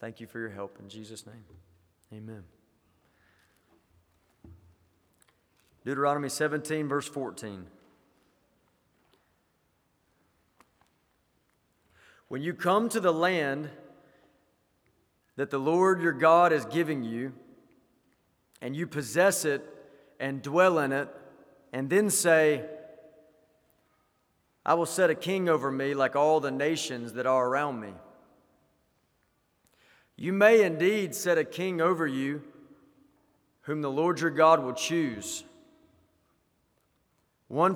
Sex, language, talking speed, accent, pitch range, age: male, English, 110 wpm, American, 125-165 Hz, 40-59